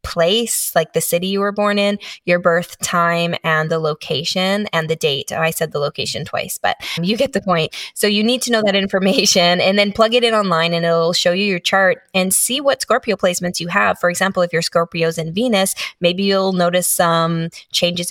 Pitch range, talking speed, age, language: 165-195 Hz, 220 wpm, 20-39, English